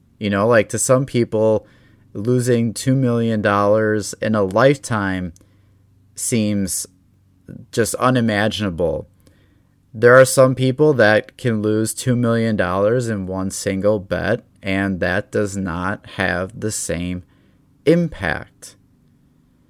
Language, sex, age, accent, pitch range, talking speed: English, male, 30-49, American, 95-115 Hz, 110 wpm